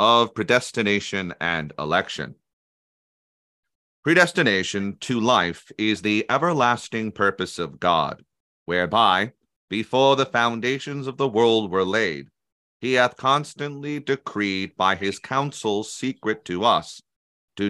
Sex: male